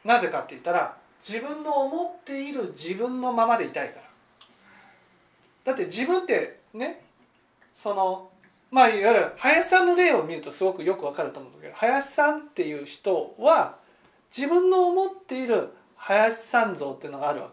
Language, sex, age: Japanese, male, 40-59